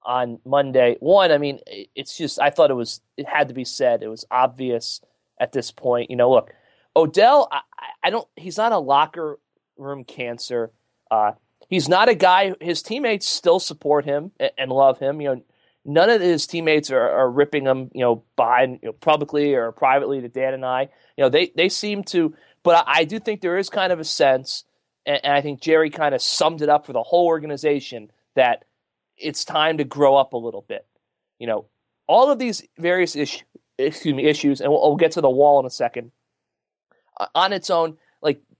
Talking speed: 210 wpm